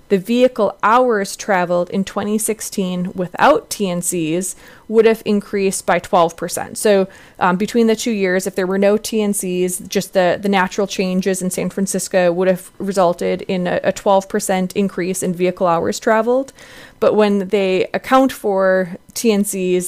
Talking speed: 150 wpm